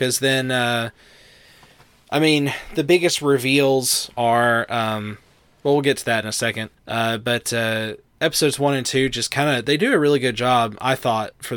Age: 20-39